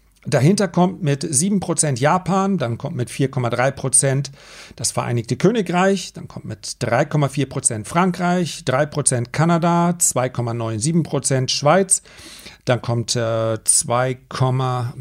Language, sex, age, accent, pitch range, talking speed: German, male, 40-59, German, 125-165 Hz, 95 wpm